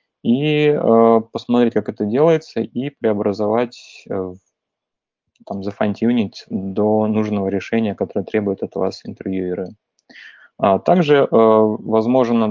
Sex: male